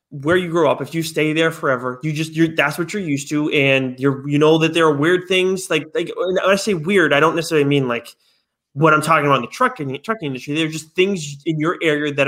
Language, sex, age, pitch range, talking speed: English, male, 20-39, 140-170 Hz, 265 wpm